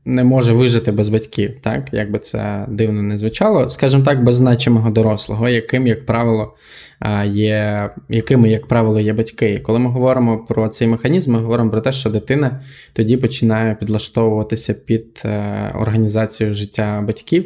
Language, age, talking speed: Ukrainian, 20-39, 160 wpm